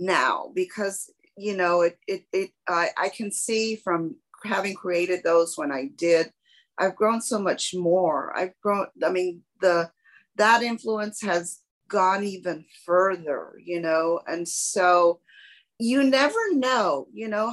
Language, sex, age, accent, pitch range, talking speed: English, female, 40-59, American, 170-220 Hz, 145 wpm